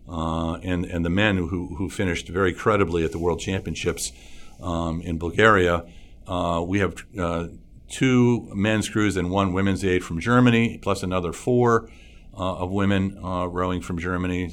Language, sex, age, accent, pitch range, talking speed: English, male, 50-69, American, 80-95 Hz, 165 wpm